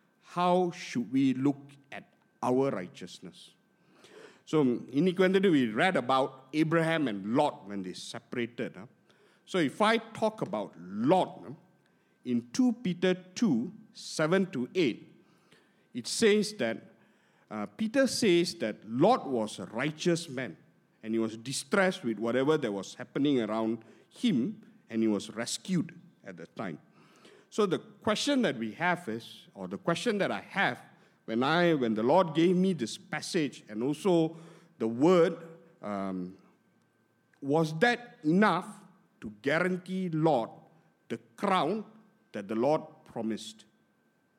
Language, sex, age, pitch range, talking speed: English, male, 50-69, 120-190 Hz, 135 wpm